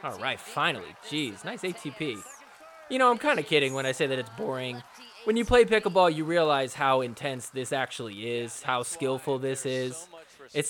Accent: American